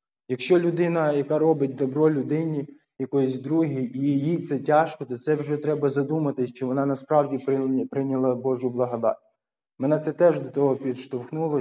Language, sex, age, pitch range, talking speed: Ukrainian, male, 20-39, 130-150 Hz, 155 wpm